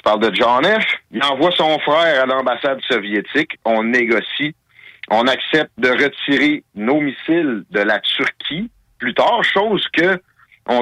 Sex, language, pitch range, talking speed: male, French, 120-155 Hz, 150 wpm